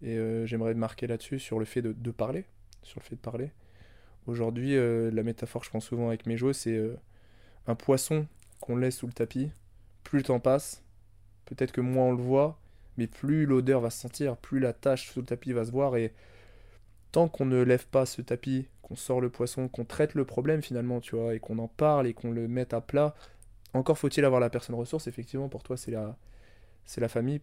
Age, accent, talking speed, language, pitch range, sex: 20-39, French, 225 wpm, French, 110-130 Hz, male